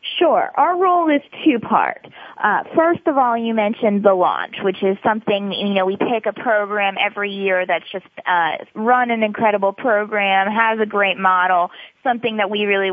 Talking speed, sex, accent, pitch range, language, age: 180 wpm, female, American, 175-215 Hz, English, 20-39